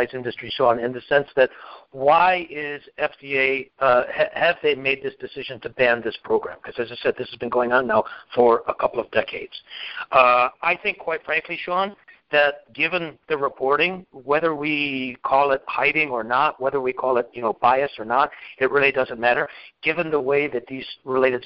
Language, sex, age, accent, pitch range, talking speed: English, male, 60-79, American, 125-165 Hz, 195 wpm